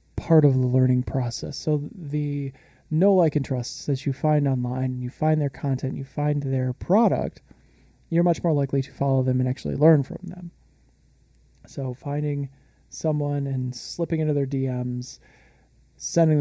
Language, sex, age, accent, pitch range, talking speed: English, male, 20-39, American, 125-145 Hz, 160 wpm